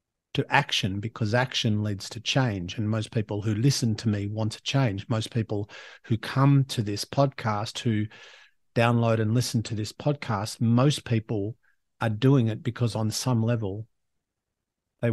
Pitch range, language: 110-140 Hz, English